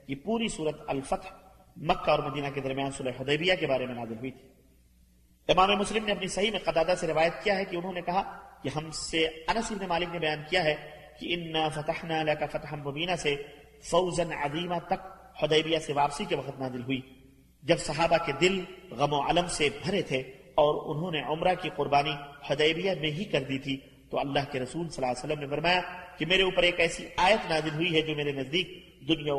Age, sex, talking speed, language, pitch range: 40-59, male, 165 wpm, Arabic, 145-180 Hz